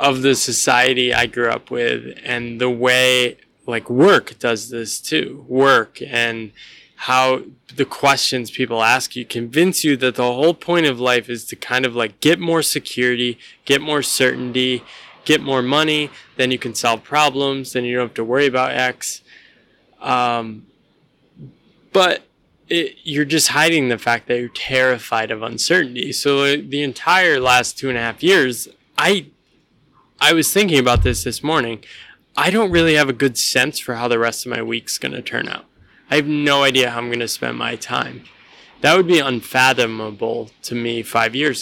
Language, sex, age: English, male, 20-39